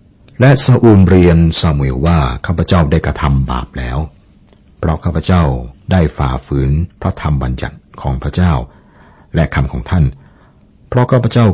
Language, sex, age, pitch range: Thai, male, 60-79, 70-90 Hz